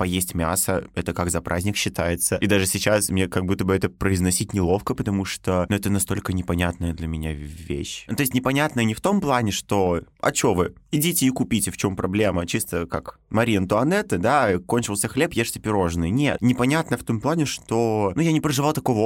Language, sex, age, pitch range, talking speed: Russian, male, 20-39, 90-115 Hz, 200 wpm